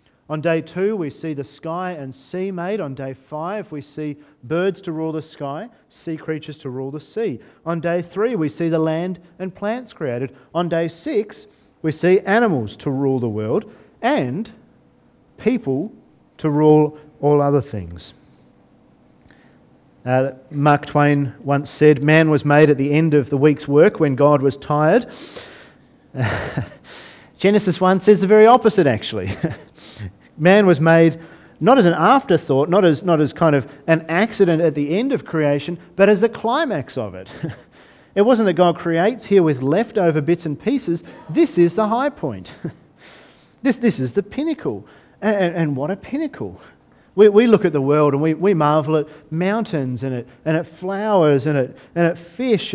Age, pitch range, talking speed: 40-59, 145-195 Hz, 175 wpm